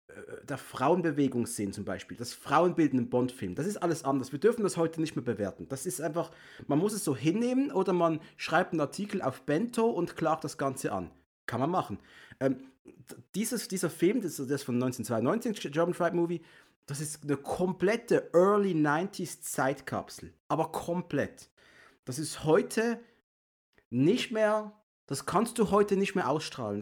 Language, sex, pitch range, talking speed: German, male, 130-180 Hz, 170 wpm